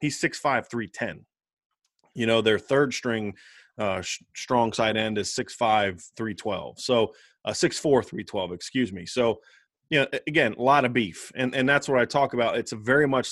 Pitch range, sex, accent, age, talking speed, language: 110-125 Hz, male, American, 30-49, 170 wpm, English